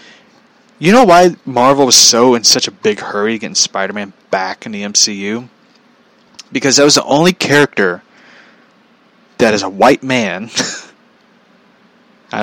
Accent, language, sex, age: American, English, male, 20-39